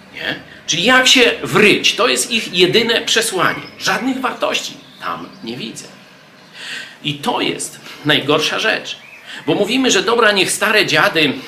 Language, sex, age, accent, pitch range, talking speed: Polish, male, 50-69, native, 145-210 Hz, 140 wpm